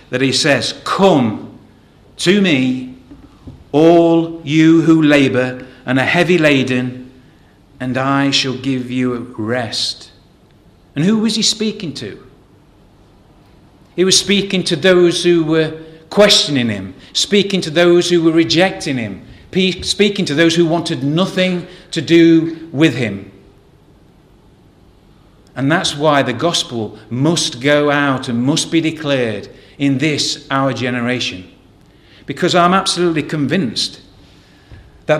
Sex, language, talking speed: male, English, 125 wpm